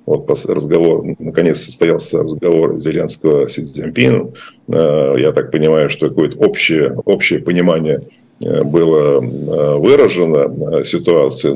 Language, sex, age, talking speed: Russian, male, 50-69, 95 wpm